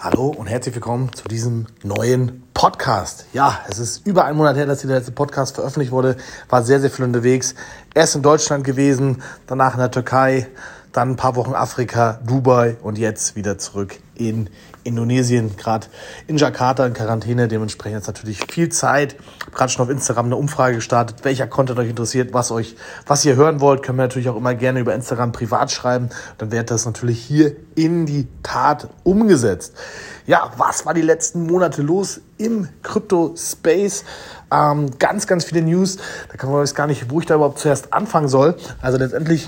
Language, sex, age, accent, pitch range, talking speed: German, male, 30-49, German, 125-150 Hz, 190 wpm